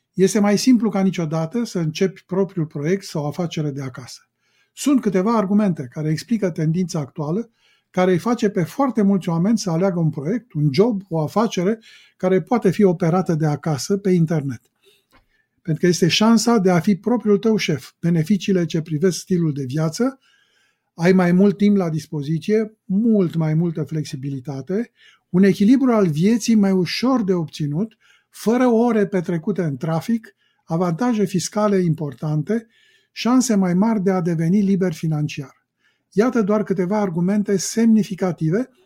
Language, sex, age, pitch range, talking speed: Romanian, male, 50-69, 160-215 Hz, 150 wpm